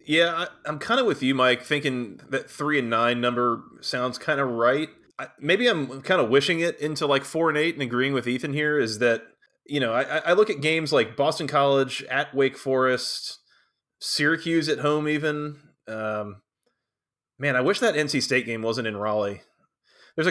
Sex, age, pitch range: male, 20-39, 120-150 Hz